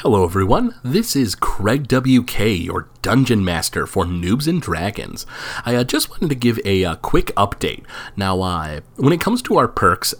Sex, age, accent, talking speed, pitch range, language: male, 30-49, American, 180 wpm, 90-120 Hz, English